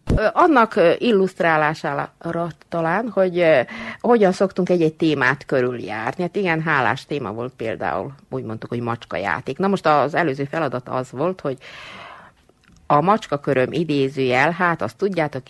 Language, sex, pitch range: Hungarian, female, 130-175 Hz